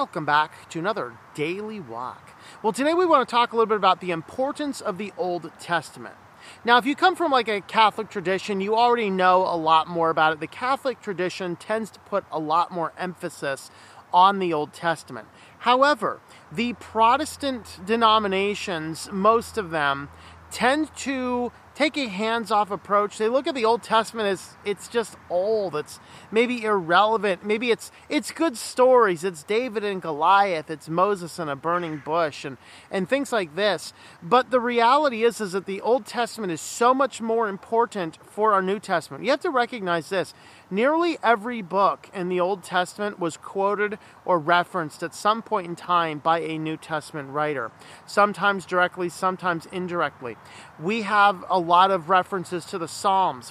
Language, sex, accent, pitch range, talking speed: English, male, American, 175-225 Hz, 175 wpm